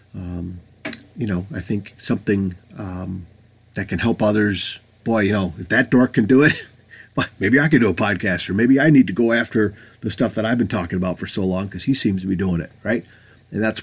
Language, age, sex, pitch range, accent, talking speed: English, 40-59, male, 90-115 Hz, American, 235 wpm